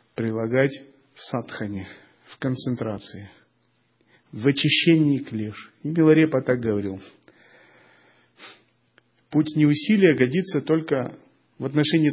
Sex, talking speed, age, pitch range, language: male, 90 wpm, 40-59, 110-150 Hz, Russian